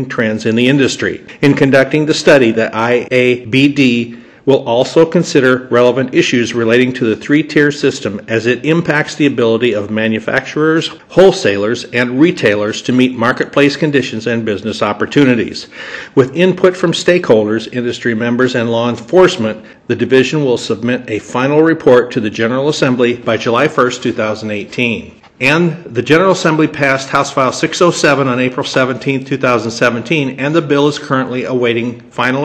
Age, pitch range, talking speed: 50-69, 120-140 Hz, 150 wpm